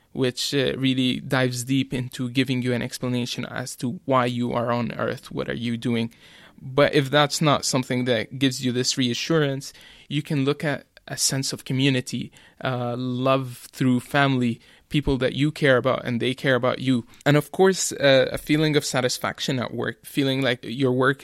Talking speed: 185 wpm